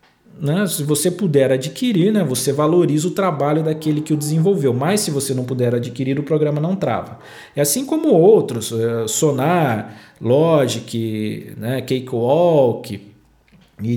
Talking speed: 140 wpm